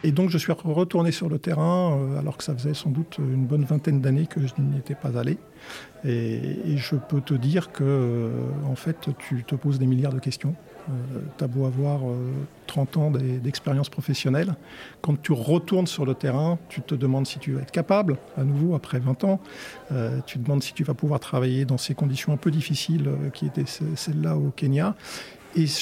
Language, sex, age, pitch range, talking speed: French, male, 50-69, 135-160 Hz, 210 wpm